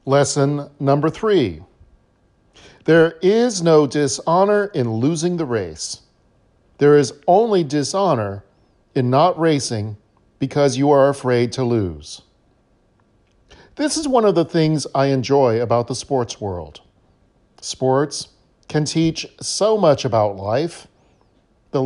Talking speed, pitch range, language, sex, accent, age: 120 wpm, 110-150 Hz, English, male, American, 40-59